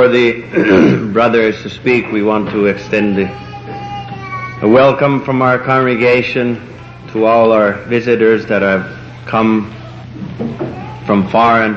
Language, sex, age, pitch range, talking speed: English, male, 60-79, 105-125 Hz, 120 wpm